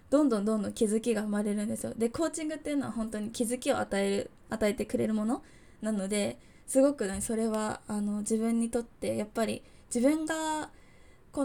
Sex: female